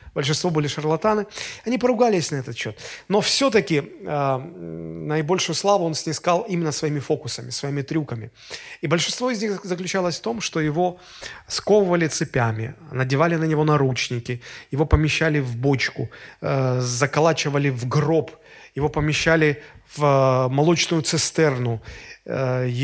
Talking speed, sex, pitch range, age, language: 130 wpm, male, 140-180 Hz, 30-49, Russian